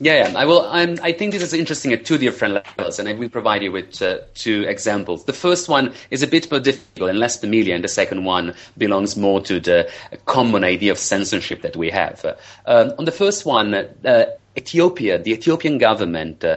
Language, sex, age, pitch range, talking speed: English, male, 30-49, 100-145 Hz, 205 wpm